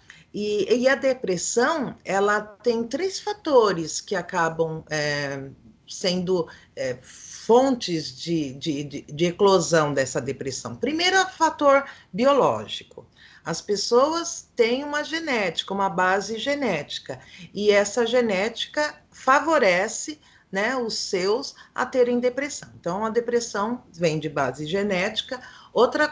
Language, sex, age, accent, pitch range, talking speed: Portuguese, female, 40-59, Brazilian, 170-250 Hz, 115 wpm